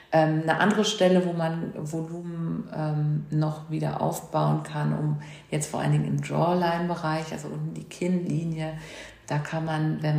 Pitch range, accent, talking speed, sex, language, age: 145-175 Hz, German, 165 wpm, female, German, 50-69